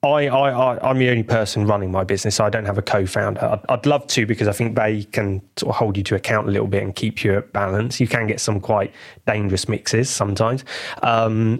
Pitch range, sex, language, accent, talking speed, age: 105-125 Hz, male, English, British, 250 wpm, 20-39